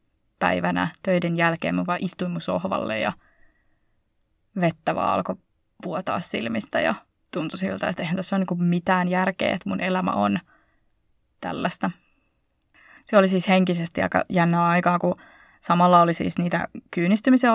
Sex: female